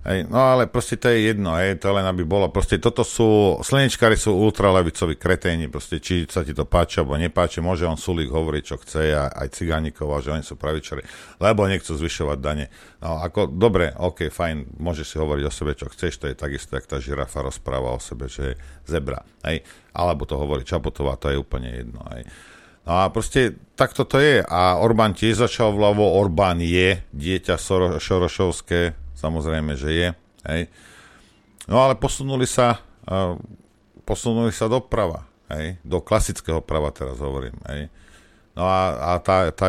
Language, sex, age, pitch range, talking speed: Slovak, male, 50-69, 75-100 Hz, 175 wpm